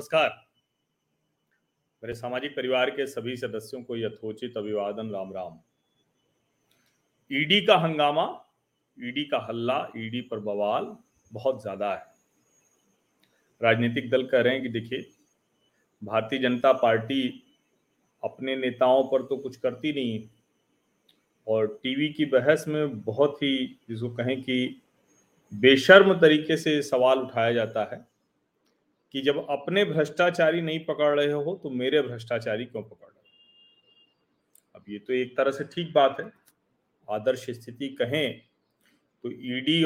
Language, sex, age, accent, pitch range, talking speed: Hindi, male, 40-59, native, 120-165 Hz, 130 wpm